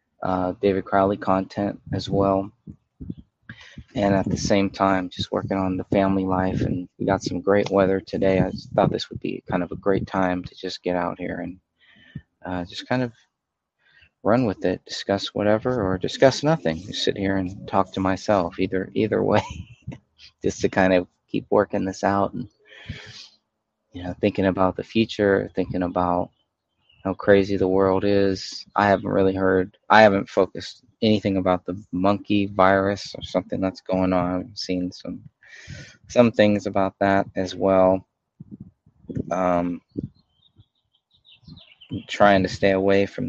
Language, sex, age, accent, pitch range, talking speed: English, male, 20-39, American, 90-100 Hz, 160 wpm